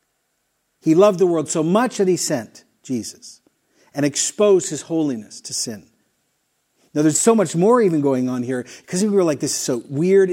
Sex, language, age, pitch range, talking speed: male, English, 50-69, 145-200 Hz, 190 wpm